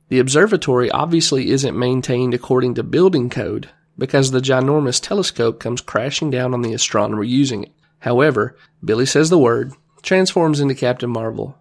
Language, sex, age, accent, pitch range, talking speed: English, male, 30-49, American, 120-155 Hz, 155 wpm